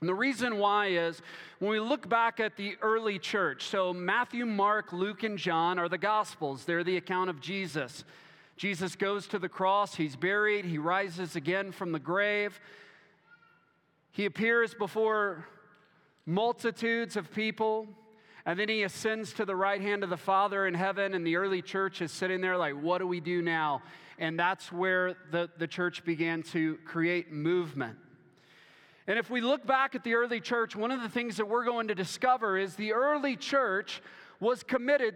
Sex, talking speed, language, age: male, 180 wpm, English, 40-59